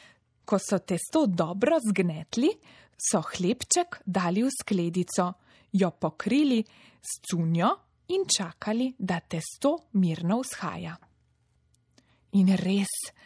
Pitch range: 185-245 Hz